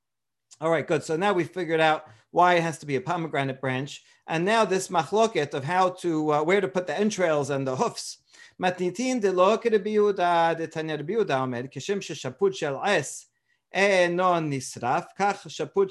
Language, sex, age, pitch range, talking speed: English, male, 40-59, 160-215 Hz, 130 wpm